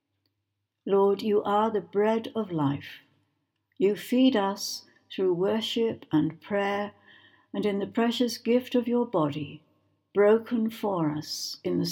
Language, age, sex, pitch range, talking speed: English, 60-79, female, 145-220 Hz, 135 wpm